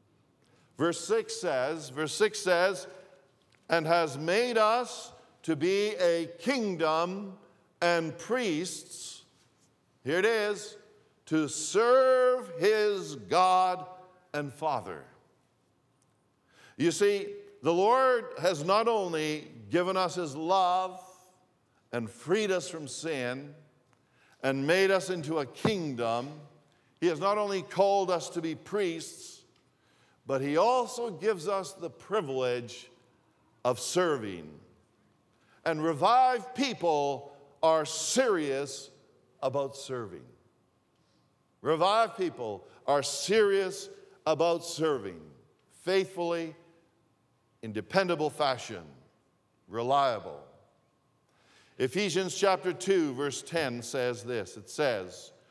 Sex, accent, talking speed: male, American, 100 wpm